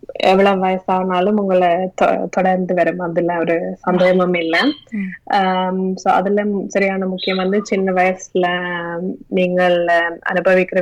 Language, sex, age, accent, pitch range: Tamil, female, 20-39, native, 175-190 Hz